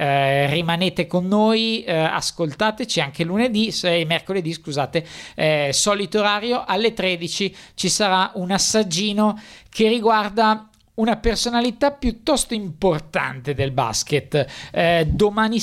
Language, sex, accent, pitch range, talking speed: Italian, male, native, 145-190 Hz, 115 wpm